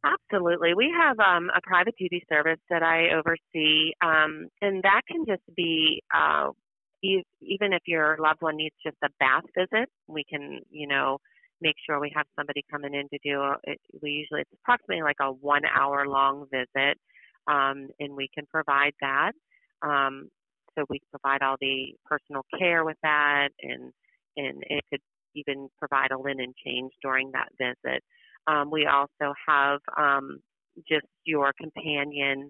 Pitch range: 140-165 Hz